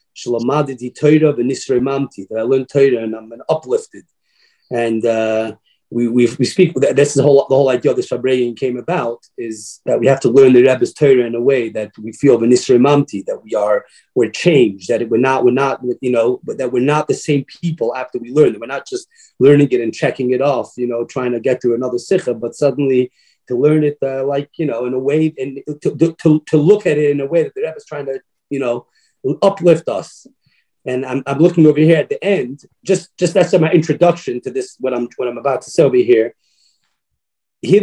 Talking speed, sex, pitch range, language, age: 225 wpm, male, 125-165 Hz, English, 30-49